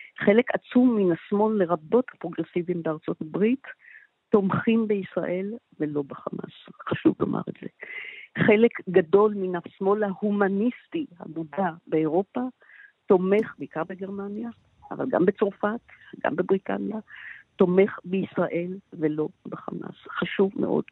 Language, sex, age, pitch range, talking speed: Hebrew, female, 50-69, 175-235 Hz, 105 wpm